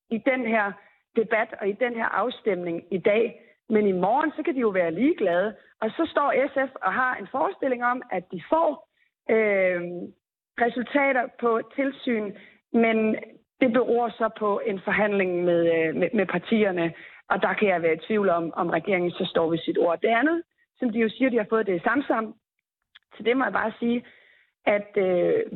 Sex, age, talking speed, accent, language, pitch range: female, 30-49, 190 wpm, native, Danish, 190-255 Hz